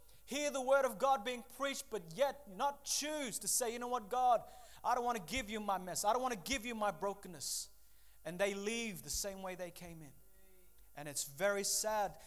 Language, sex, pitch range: English, male, 180-230 Hz